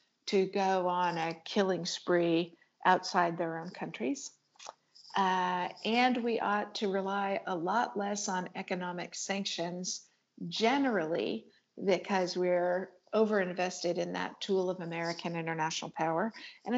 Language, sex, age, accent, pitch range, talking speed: English, female, 50-69, American, 175-205 Hz, 120 wpm